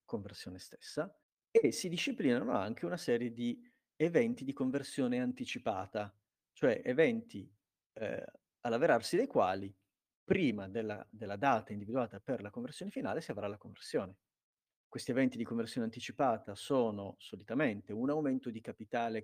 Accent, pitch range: native, 105-155 Hz